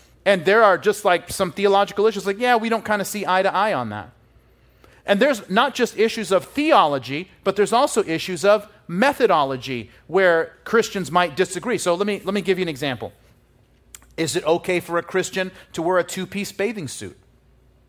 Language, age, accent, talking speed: English, 30-49, American, 195 wpm